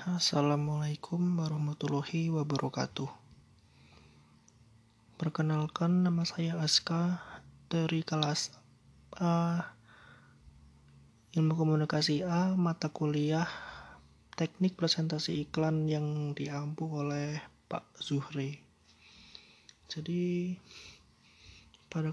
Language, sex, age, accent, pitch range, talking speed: Indonesian, male, 20-39, native, 140-165 Hz, 70 wpm